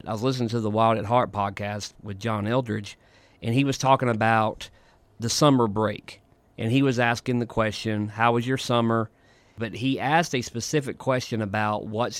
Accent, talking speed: American, 185 wpm